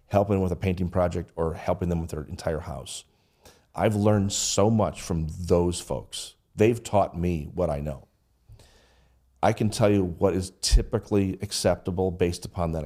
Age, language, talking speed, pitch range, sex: 40-59, English, 170 wpm, 85-100 Hz, male